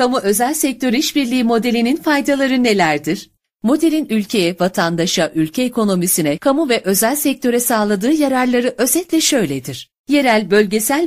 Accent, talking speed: native, 120 wpm